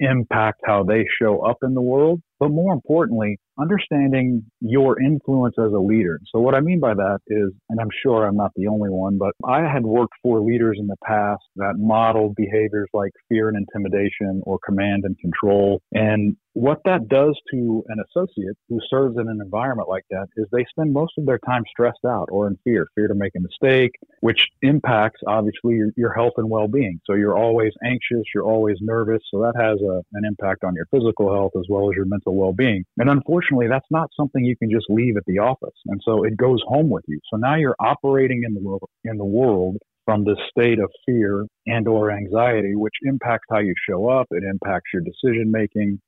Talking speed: 210 wpm